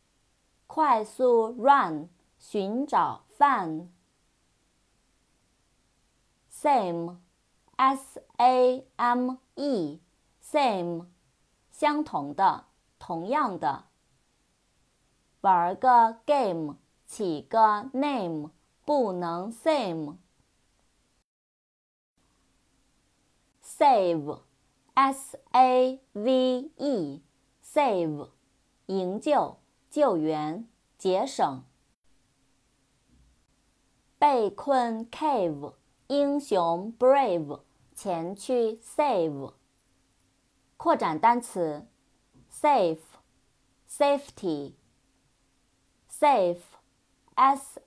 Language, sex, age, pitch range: Chinese, female, 30-49, 165-270 Hz